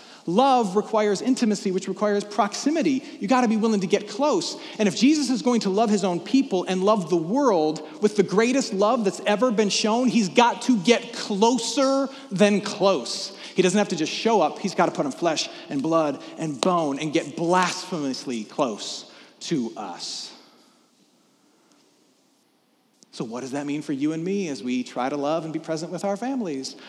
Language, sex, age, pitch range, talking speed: English, male, 30-49, 170-225 Hz, 190 wpm